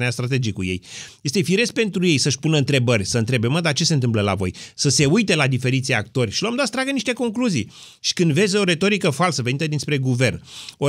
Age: 30-49